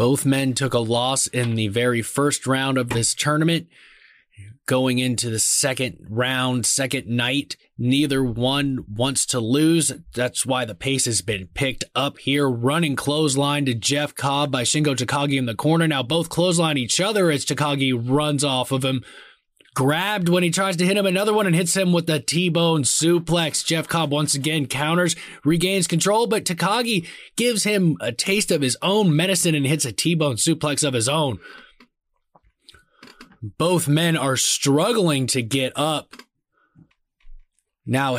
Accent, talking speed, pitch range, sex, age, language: American, 170 wpm, 135-180 Hz, male, 20-39, English